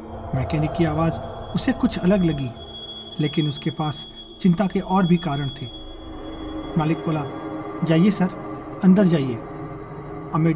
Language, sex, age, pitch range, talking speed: Hindi, male, 40-59, 135-175 Hz, 130 wpm